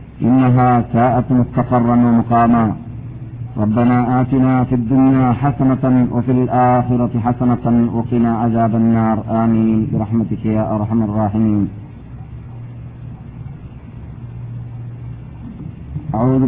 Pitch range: 125-145 Hz